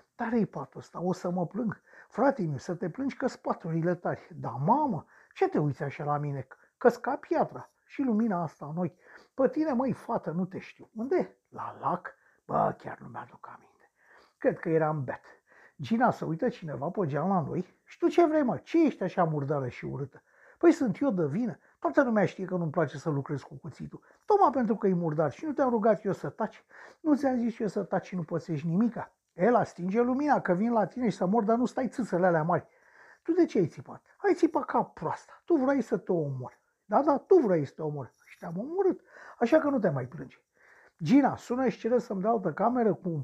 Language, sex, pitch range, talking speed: Romanian, male, 170-260 Hz, 230 wpm